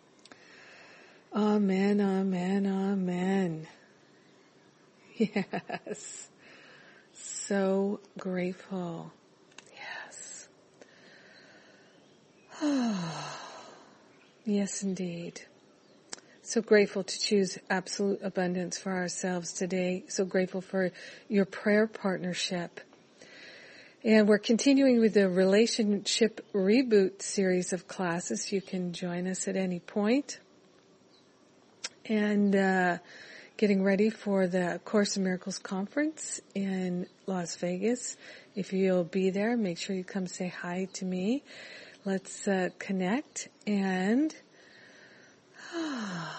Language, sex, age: English, female, 50-69